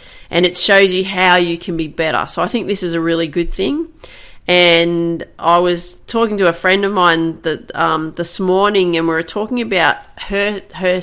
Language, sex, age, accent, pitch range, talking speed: English, female, 30-49, Australian, 165-185 Hz, 205 wpm